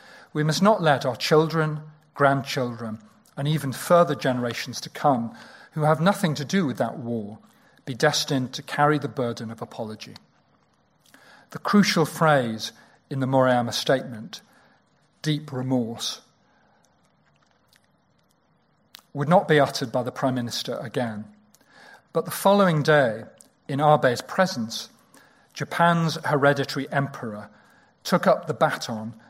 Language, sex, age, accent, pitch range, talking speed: English, male, 40-59, British, 125-155 Hz, 125 wpm